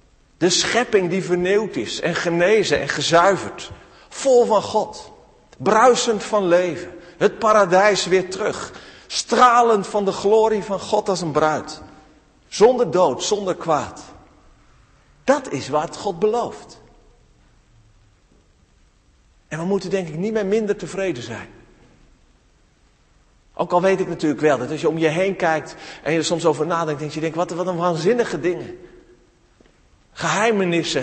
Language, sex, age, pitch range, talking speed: Dutch, male, 50-69, 150-195 Hz, 145 wpm